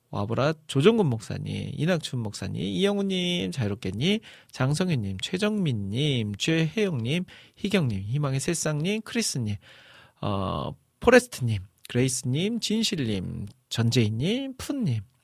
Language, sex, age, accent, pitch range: Korean, male, 40-59, native, 115-170 Hz